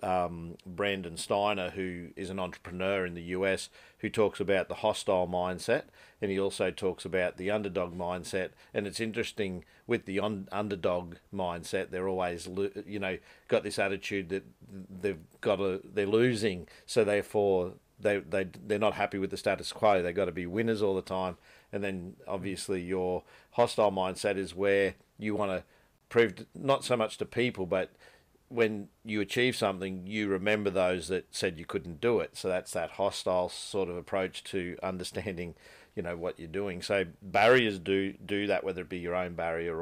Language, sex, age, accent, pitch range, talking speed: English, male, 50-69, Australian, 90-105 Hz, 175 wpm